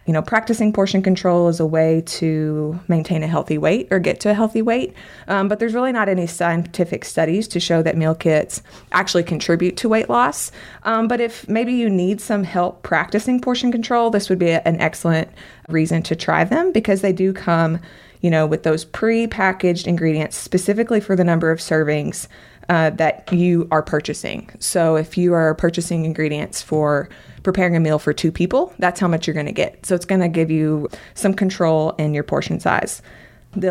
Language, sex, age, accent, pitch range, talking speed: English, female, 20-39, American, 160-200 Hz, 195 wpm